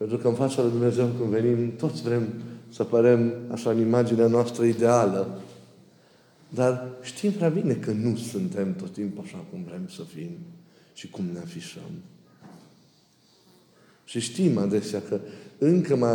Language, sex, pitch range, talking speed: Romanian, male, 115-150 Hz, 150 wpm